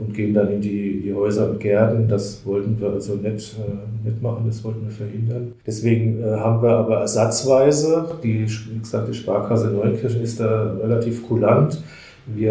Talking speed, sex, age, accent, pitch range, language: 180 wpm, male, 40-59, German, 105-125 Hz, German